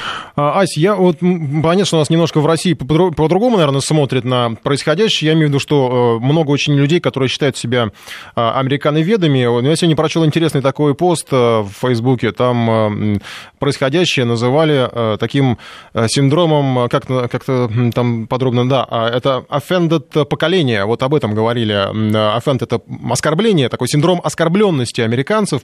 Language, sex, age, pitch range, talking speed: Russian, male, 20-39, 120-160 Hz, 140 wpm